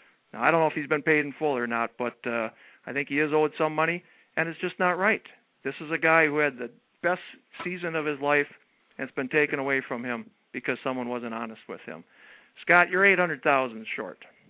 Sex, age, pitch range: male, 50-69, 130-165 Hz